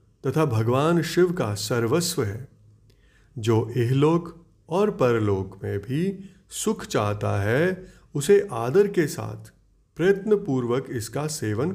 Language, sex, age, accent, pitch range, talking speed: Hindi, male, 30-49, native, 110-145 Hz, 110 wpm